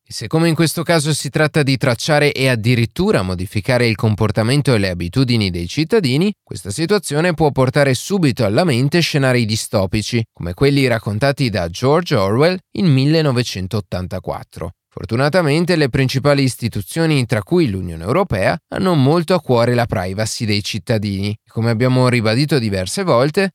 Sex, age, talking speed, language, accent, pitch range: male, 30-49, 150 wpm, Italian, native, 110-155 Hz